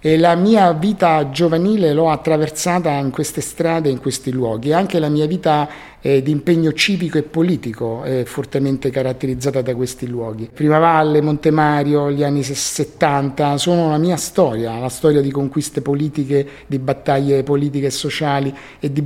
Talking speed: 160 wpm